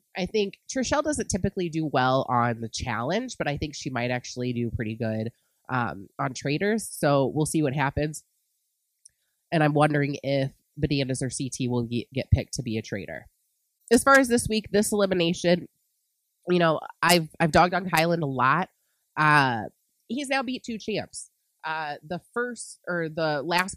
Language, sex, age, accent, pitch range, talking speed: English, female, 20-39, American, 140-205 Hz, 175 wpm